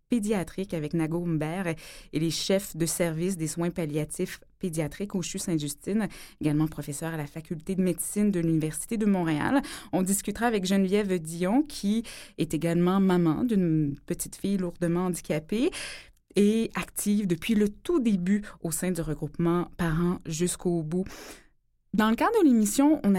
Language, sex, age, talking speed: French, female, 20-39, 155 wpm